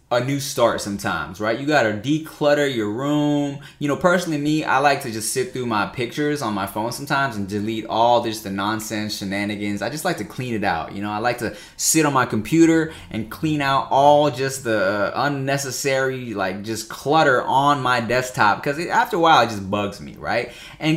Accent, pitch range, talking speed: American, 130-180 Hz, 205 wpm